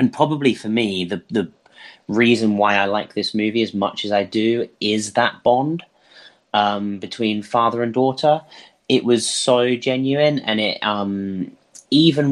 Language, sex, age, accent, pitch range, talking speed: English, male, 30-49, British, 95-115 Hz, 160 wpm